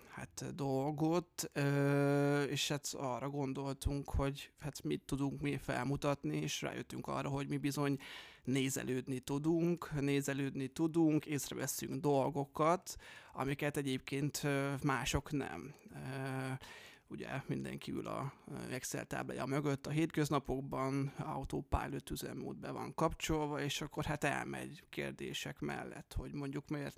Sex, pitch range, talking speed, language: male, 135-145 Hz, 110 wpm, Hungarian